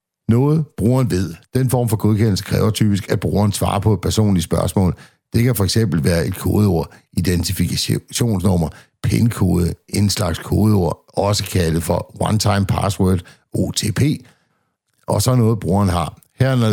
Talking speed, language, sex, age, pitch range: 145 wpm, Danish, male, 60-79, 95-110 Hz